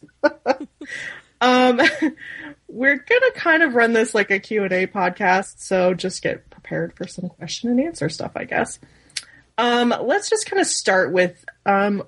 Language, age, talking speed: English, 20-39, 160 wpm